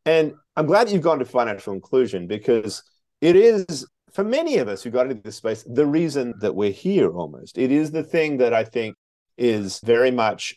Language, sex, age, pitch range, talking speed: English, male, 40-59, 110-160 Hz, 205 wpm